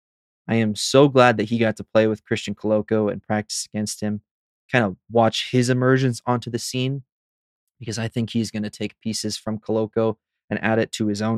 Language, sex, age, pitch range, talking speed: English, male, 20-39, 105-120 Hz, 210 wpm